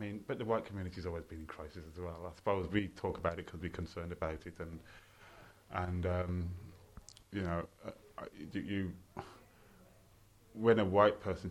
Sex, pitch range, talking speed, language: male, 85-105 Hz, 190 wpm, English